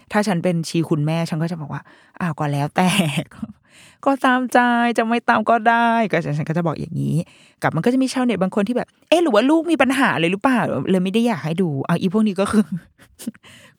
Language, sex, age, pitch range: Thai, female, 20-39, 165-225 Hz